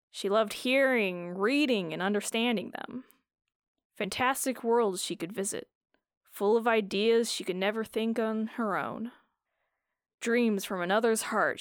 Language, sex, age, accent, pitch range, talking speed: English, female, 20-39, American, 210-250 Hz, 135 wpm